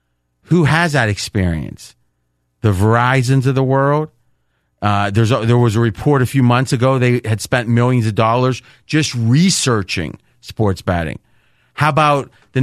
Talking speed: 155 wpm